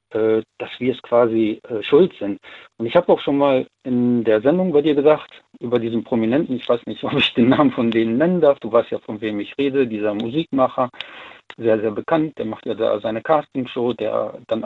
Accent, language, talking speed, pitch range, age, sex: German, German, 215 wpm, 115-155 Hz, 50-69, male